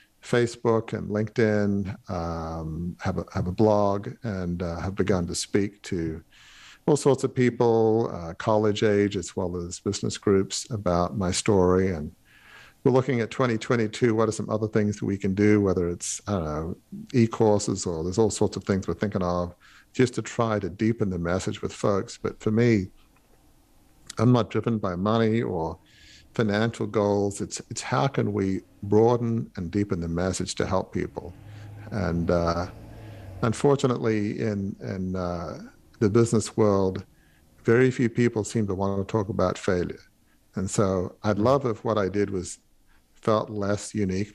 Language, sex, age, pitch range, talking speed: English, male, 50-69, 90-110 Hz, 170 wpm